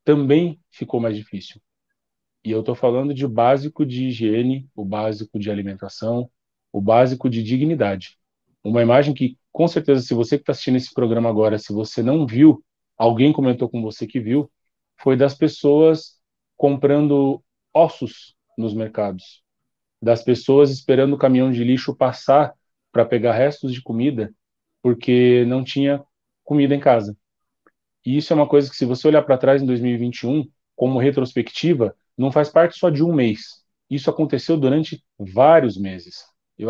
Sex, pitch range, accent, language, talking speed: male, 115-145 Hz, Brazilian, Portuguese, 160 wpm